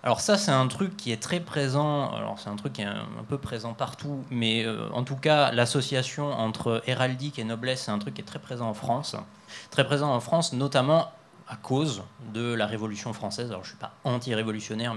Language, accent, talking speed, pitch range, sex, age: French, French, 220 wpm, 115-145 Hz, male, 20-39